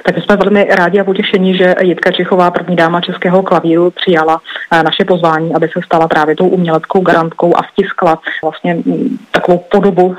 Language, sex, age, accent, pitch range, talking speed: Czech, female, 30-49, native, 165-185 Hz, 165 wpm